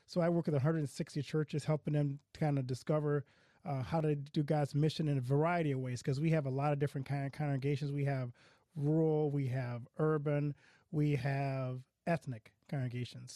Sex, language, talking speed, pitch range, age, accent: male, English, 190 wpm, 135-160 Hz, 30-49, American